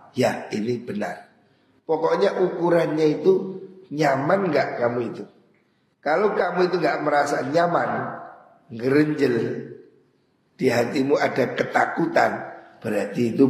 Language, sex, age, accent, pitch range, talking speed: Indonesian, male, 50-69, native, 130-170 Hz, 100 wpm